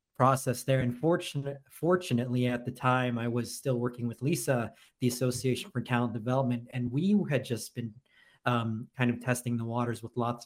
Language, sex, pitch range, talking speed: English, male, 120-130 Hz, 185 wpm